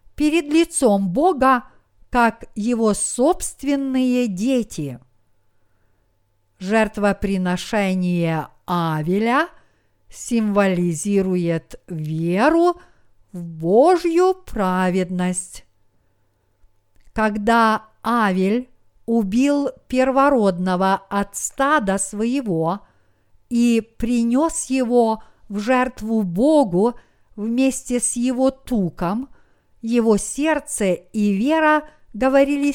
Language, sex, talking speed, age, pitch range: Russian, female, 65 wpm, 50-69, 185-265 Hz